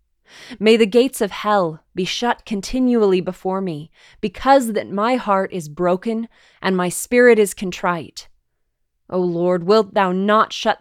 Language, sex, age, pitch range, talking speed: English, female, 20-39, 180-220 Hz, 150 wpm